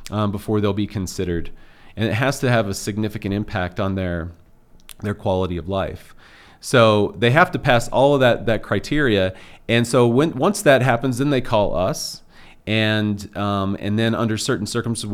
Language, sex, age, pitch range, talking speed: English, male, 40-59, 100-115 Hz, 180 wpm